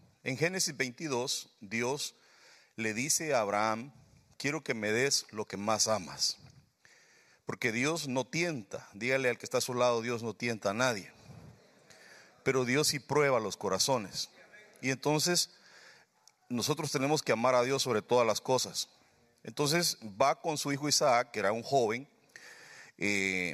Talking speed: 155 wpm